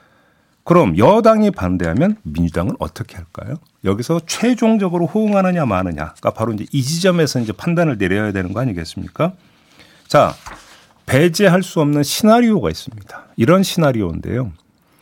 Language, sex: Korean, male